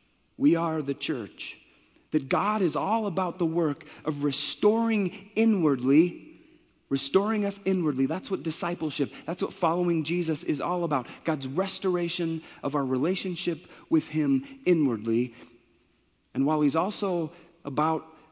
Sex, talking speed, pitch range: male, 130 wpm, 135-175 Hz